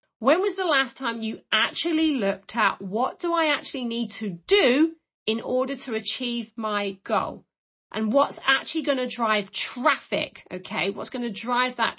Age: 40-59